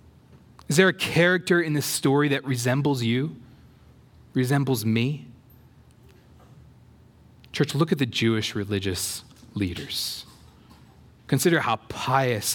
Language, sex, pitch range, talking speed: English, male, 110-140 Hz, 105 wpm